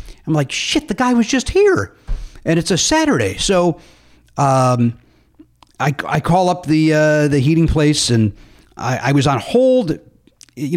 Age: 40-59